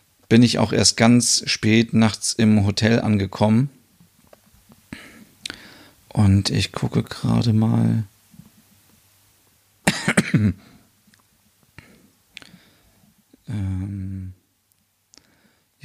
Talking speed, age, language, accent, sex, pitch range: 60 wpm, 40-59, German, German, male, 100-115 Hz